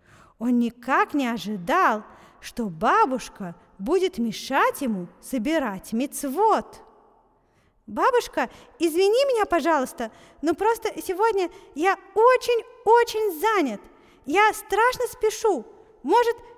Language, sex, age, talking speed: Russian, female, 30-49, 90 wpm